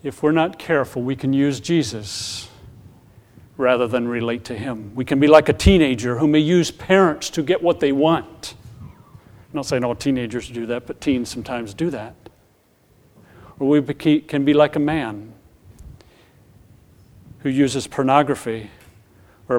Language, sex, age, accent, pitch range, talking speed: English, male, 40-59, American, 110-150 Hz, 160 wpm